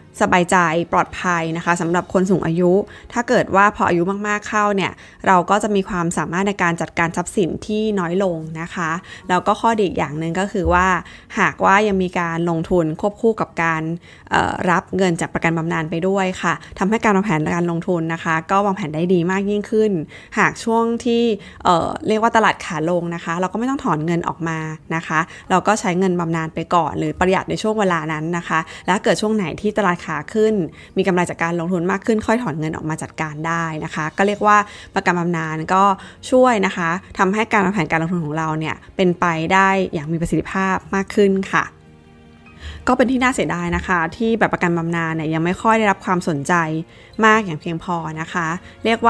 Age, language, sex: 20-39, Thai, female